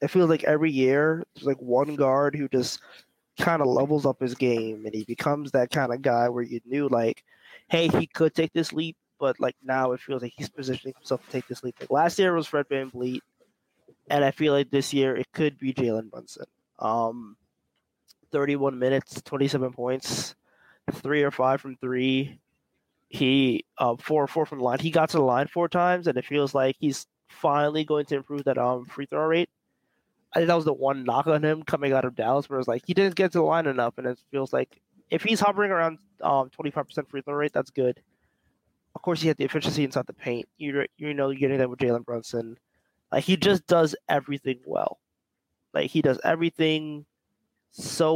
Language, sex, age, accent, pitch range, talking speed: English, male, 20-39, American, 125-150 Hz, 215 wpm